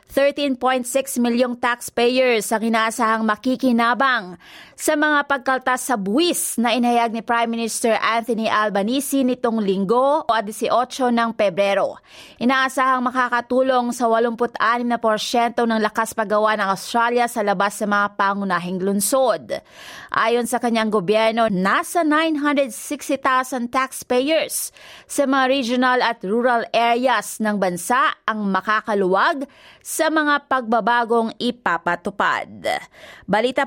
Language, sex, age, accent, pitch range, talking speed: Filipino, female, 30-49, native, 215-260 Hz, 110 wpm